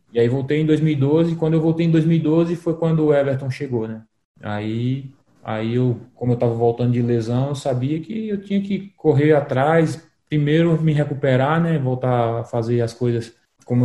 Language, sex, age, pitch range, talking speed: Portuguese, male, 20-39, 115-135 Hz, 185 wpm